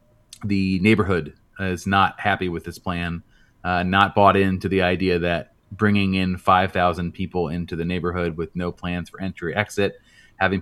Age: 30-49